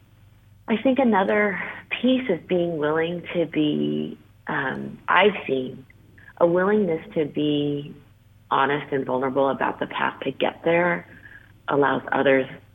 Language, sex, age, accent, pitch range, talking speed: English, female, 30-49, American, 130-160 Hz, 125 wpm